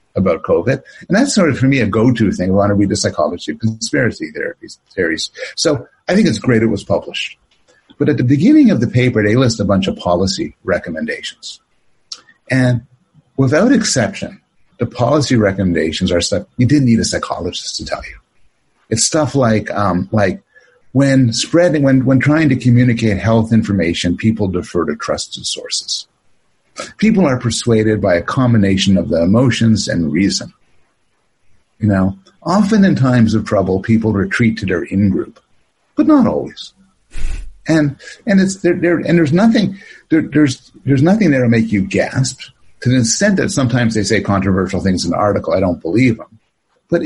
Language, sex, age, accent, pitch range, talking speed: English, male, 50-69, American, 105-150 Hz, 175 wpm